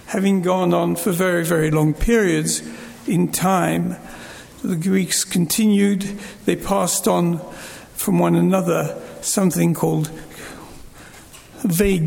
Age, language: 60-79, English